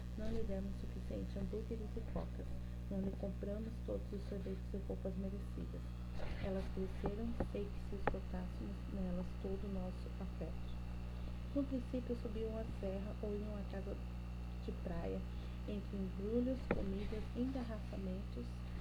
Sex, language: female, Portuguese